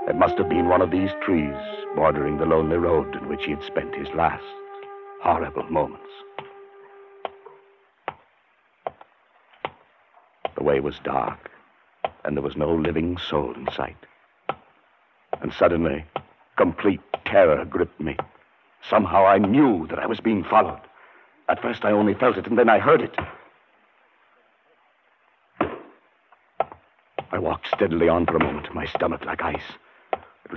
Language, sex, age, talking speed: English, male, 60-79, 135 wpm